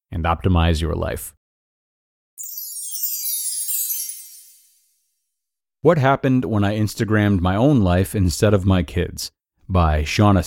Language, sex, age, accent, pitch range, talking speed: English, male, 40-59, American, 90-115 Hz, 105 wpm